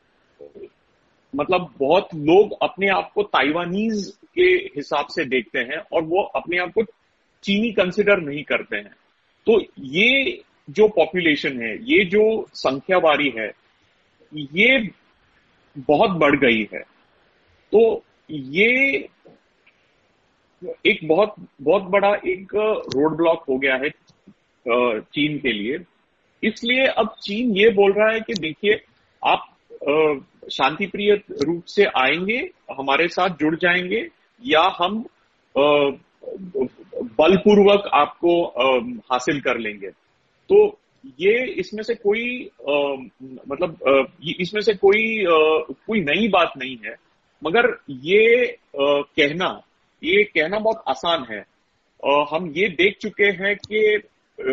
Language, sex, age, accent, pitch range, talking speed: Hindi, male, 40-59, native, 150-220 Hz, 115 wpm